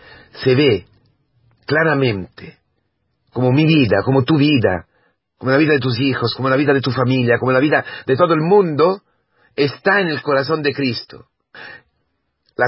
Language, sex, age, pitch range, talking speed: Spanish, male, 40-59, 115-150 Hz, 165 wpm